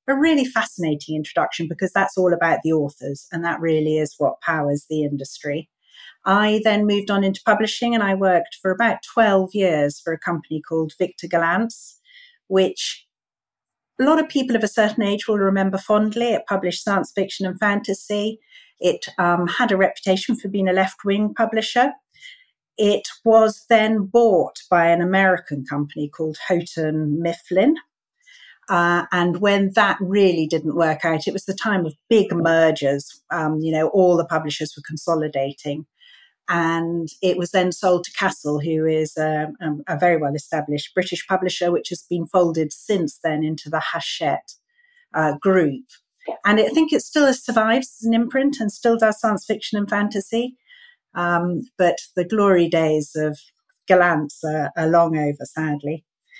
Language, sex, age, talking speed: English, female, 40-59, 160 wpm